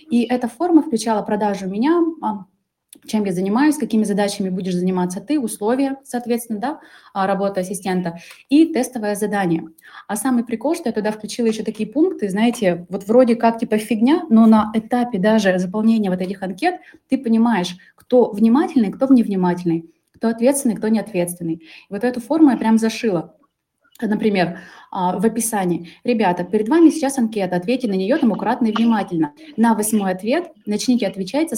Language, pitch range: Russian, 195-245 Hz